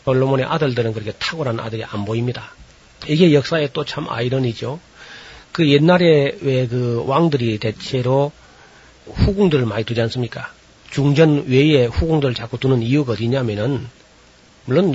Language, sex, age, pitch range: Korean, male, 40-59, 120-150 Hz